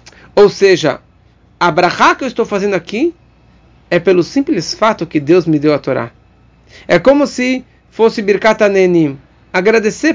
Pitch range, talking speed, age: 135-205 Hz, 150 wpm, 40-59